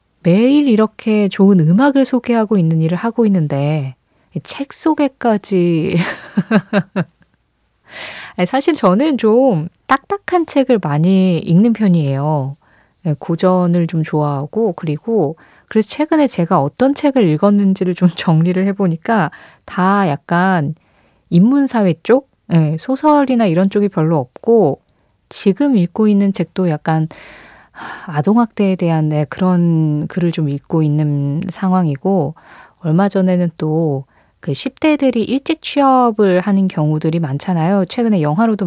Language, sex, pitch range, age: Korean, female, 160-215 Hz, 20-39